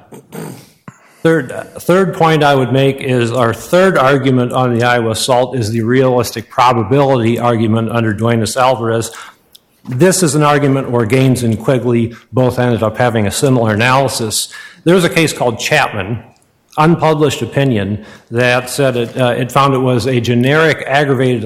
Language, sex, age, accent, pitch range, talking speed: English, male, 50-69, American, 115-145 Hz, 155 wpm